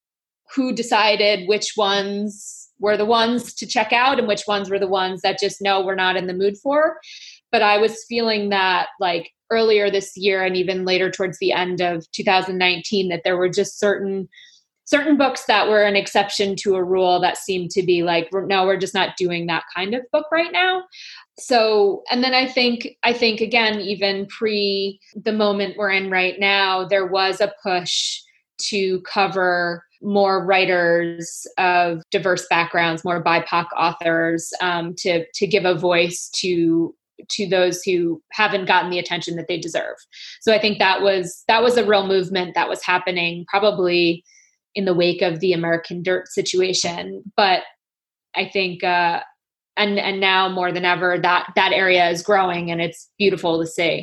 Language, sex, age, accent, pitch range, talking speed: English, female, 20-39, American, 180-210 Hz, 180 wpm